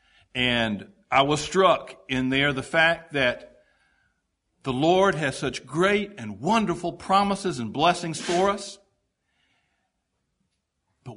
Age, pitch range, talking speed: 60-79, 120-185 Hz, 120 wpm